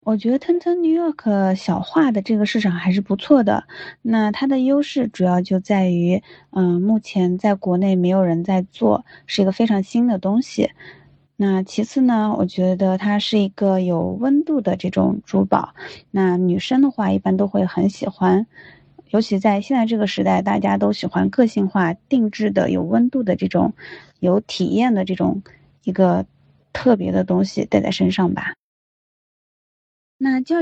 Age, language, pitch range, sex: 20-39, Chinese, 190-240 Hz, female